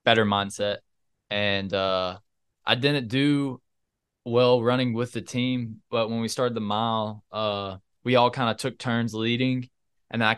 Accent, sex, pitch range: American, male, 100-115 Hz